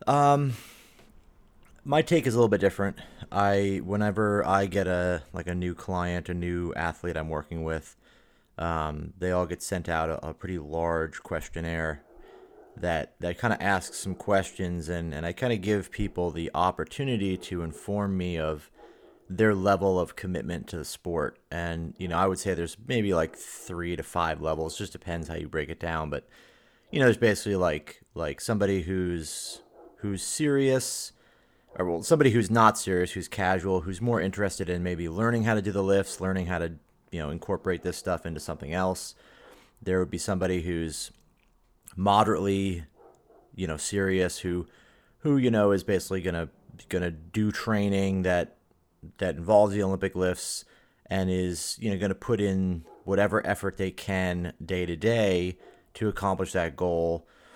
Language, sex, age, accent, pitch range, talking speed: English, male, 30-49, American, 85-100 Hz, 170 wpm